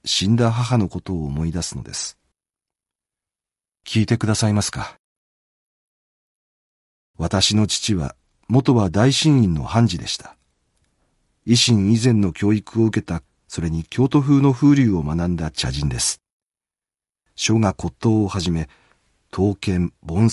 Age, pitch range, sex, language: 40-59, 85-120 Hz, male, Japanese